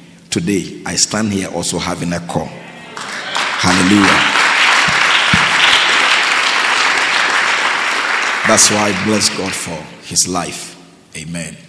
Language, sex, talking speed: English, male, 90 wpm